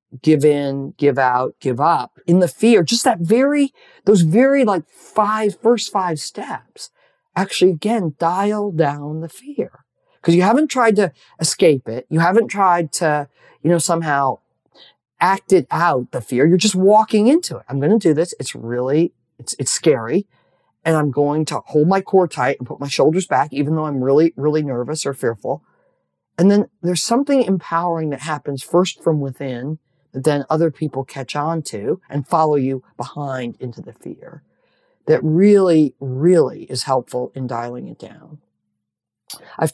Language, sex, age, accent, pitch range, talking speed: English, male, 40-59, American, 135-185 Hz, 170 wpm